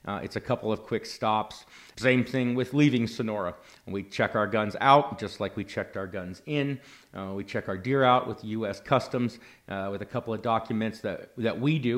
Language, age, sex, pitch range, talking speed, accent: English, 40-59, male, 105-125 Hz, 215 wpm, American